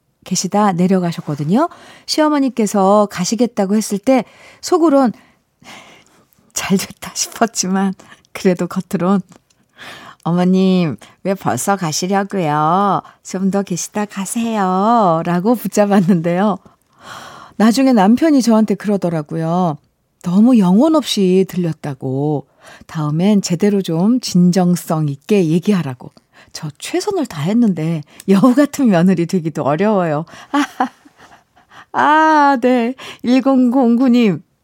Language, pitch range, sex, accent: Korean, 175-240 Hz, female, native